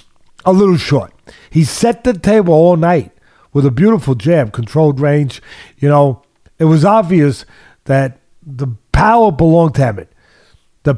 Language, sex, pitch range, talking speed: English, male, 140-200 Hz, 150 wpm